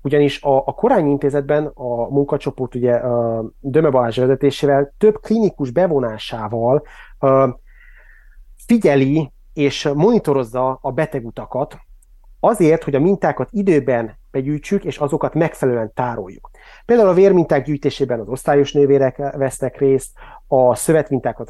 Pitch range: 120-145 Hz